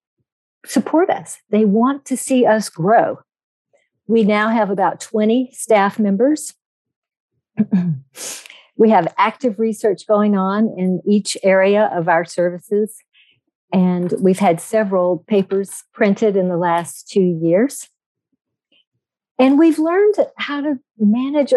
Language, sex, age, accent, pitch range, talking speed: English, female, 50-69, American, 180-225 Hz, 120 wpm